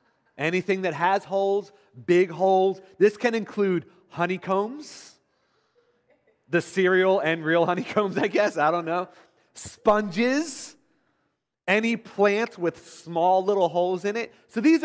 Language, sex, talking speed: English, male, 125 wpm